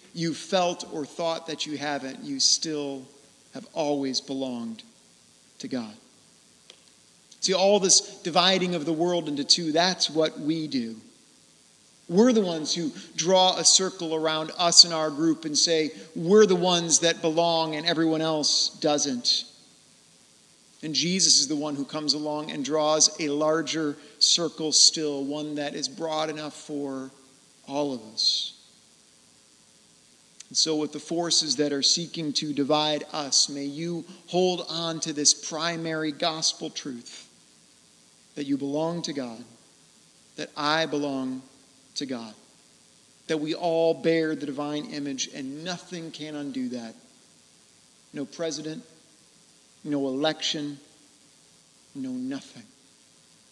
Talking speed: 135 wpm